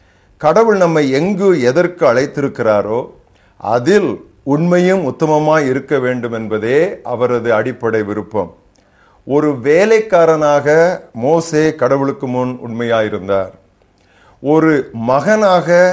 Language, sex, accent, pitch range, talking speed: Tamil, male, native, 110-155 Hz, 85 wpm